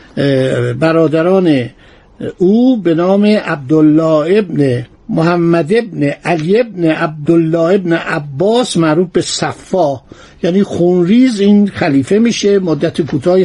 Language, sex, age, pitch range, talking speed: Persian, male, 60-79, 160-220 Hz, 105 wpm